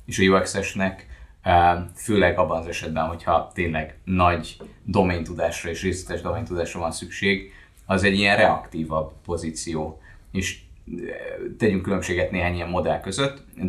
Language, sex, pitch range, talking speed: Hungarian, male, 85-95 Hz, 125 wpm